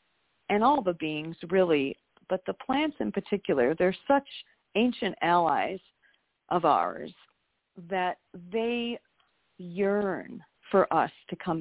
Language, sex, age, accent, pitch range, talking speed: English, female, 40-59, American, 180-235 Hz, 120 wpm